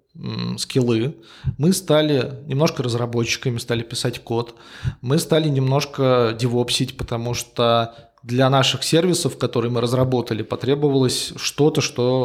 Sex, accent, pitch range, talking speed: male, native, 120-150 Hz, 115 wpm